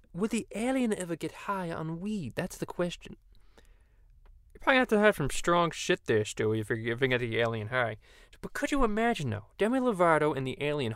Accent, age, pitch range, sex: American, 20-39, 115-175 Hz, male